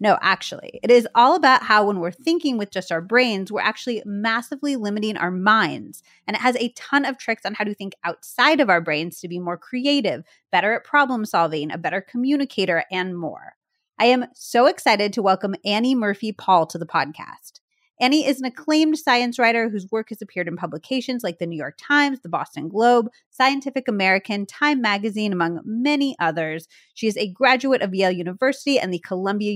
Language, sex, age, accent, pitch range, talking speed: English, female, 30-49, American, 190-260 Hz, 195 wpm